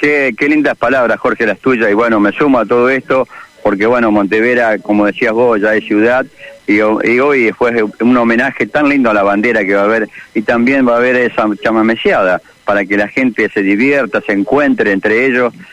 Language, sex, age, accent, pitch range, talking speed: Spanish, male, 40-59, Argentinian, 110-130 Hz, 210 wpm